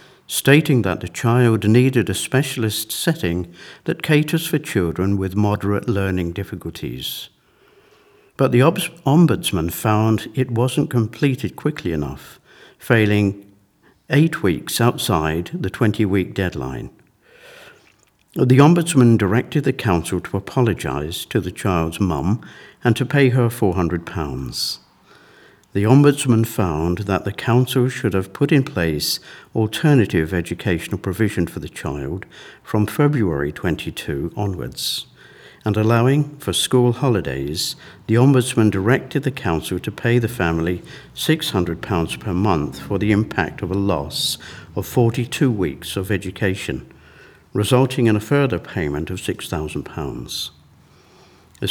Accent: British